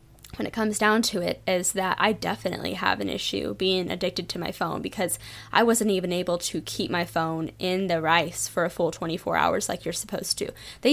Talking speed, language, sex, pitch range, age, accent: 220 wpm, English, female, 170-220 Hz, 10-29, American